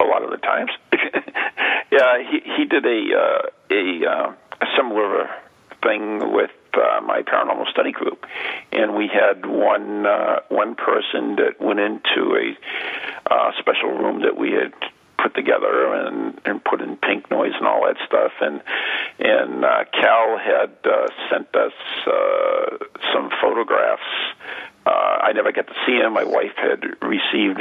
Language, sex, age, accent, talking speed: English, male, 50-69, American, 155 wpm